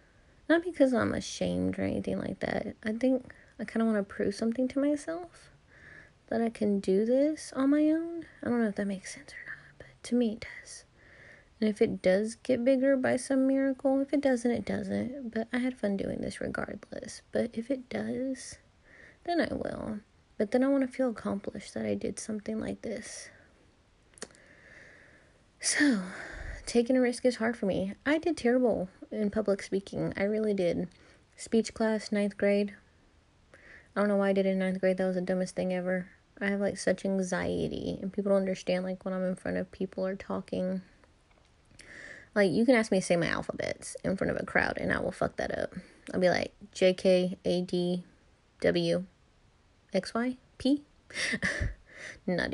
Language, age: English, 20-39